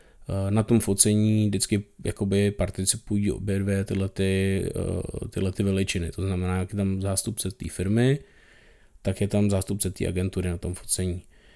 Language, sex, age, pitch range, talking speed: Czech, male, 20-39, 95-105 Hz, 150 wpm